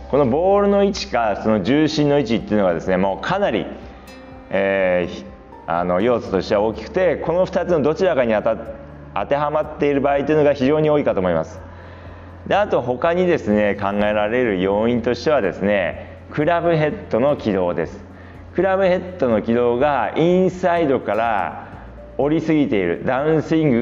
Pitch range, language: 95-155 Hz, Japanese